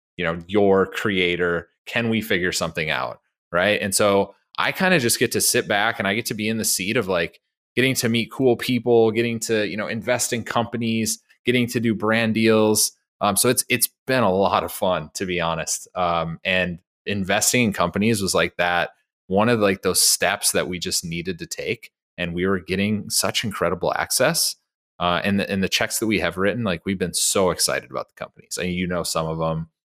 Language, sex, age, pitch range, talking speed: English, male, 30-49, 85-115 Hz, 220 wpm